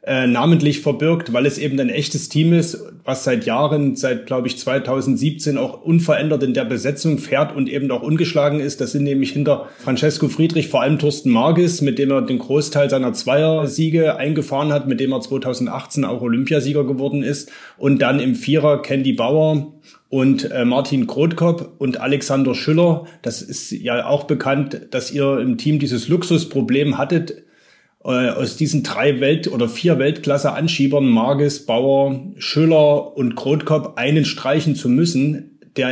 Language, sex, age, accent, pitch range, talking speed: German, male, 30-49, German, 135-155 Hz, 160 wpm